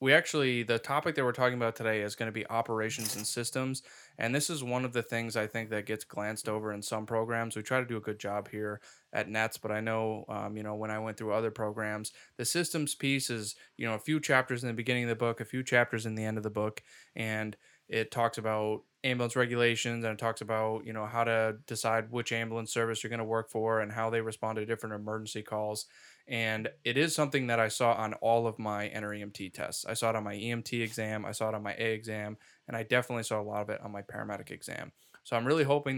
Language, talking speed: English, 255 wpm